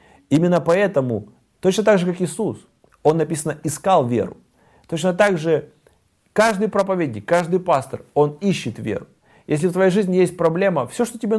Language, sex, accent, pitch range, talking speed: Russian, male, native, 130-175 Hz, 160 wpm